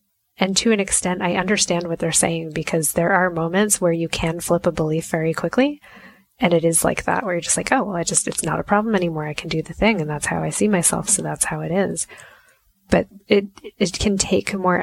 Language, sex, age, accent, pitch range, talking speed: English, female, 20-39, American, 160-200 Hz, 245 wpm